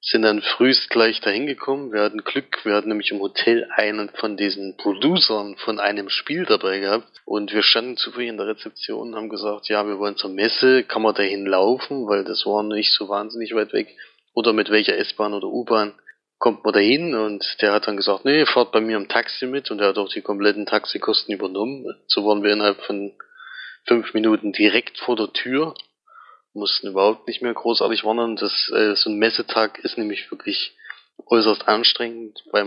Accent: German